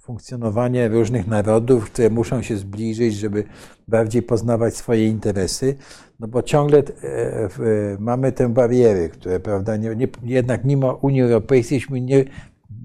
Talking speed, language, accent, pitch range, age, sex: 125 wpm, Polish, native, 110-130 Hz, 50-69, male